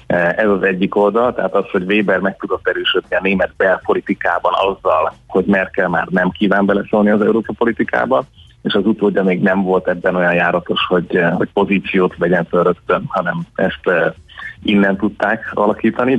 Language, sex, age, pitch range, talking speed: Hungarian, male, 30-49, 95-110 Hz, 165 wpm